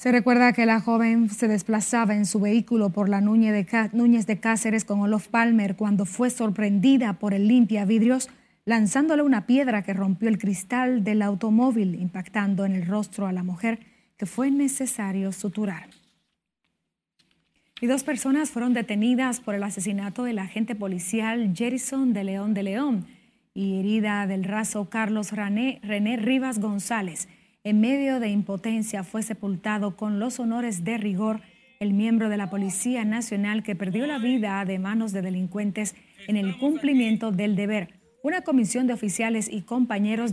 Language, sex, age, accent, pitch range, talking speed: Spanish, female, 30-49, American, 200-235 Hz, 160 wpm